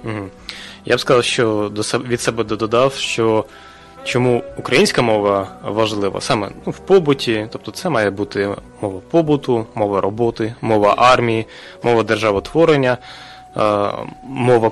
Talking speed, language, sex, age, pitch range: 120 wpm, Russian, male, 20-39, 105-140 Hz